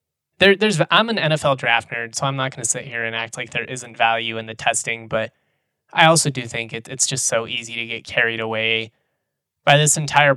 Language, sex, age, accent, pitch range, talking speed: English, male, 20-39, American, 115-145 Hz, 220 wpm